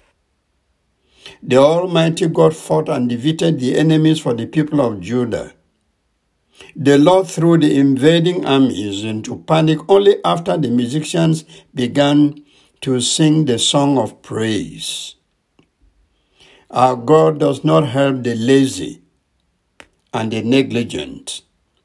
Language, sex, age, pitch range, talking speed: English, male, 60-79, 120-160 Hz, 115 wpm